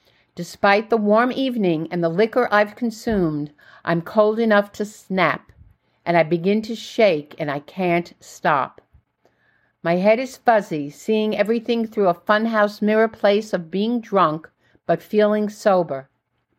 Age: 50-69